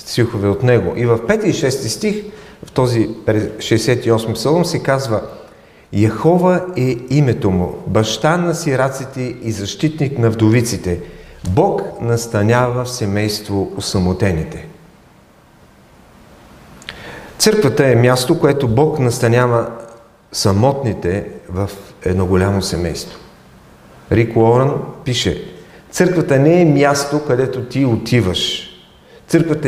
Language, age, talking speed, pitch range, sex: English, 40-59, 105 wpm, 110-145 Hz, male